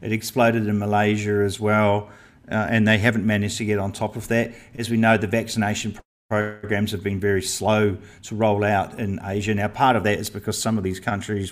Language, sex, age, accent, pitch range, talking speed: English, male, 40-59, Australian, 105-120 Hz, 220 wpm